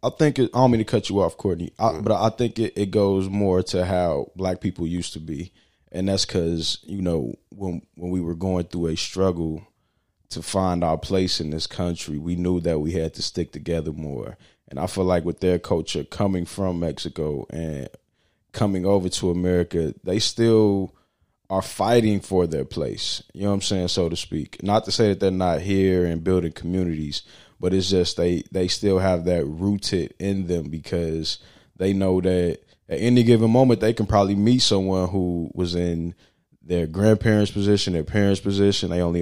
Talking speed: 200 wpm